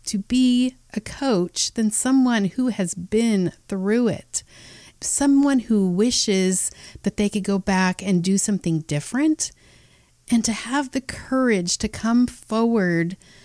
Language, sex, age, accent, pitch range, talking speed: English, female, 30-49, American, 175-235 Hz, 140 wpm